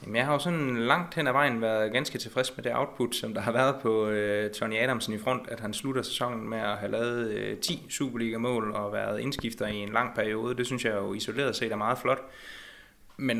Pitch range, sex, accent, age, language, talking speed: 110-130 Hz, male, native, 20-39, Danish, 235 wpm